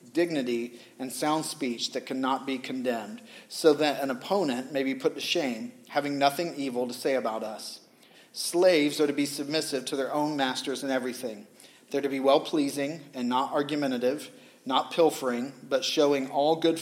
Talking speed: 175 wpm